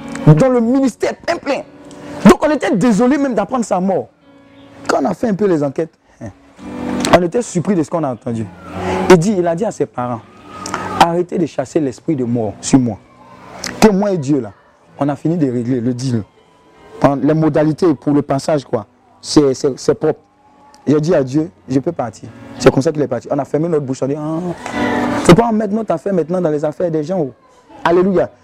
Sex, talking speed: male, 215 wpm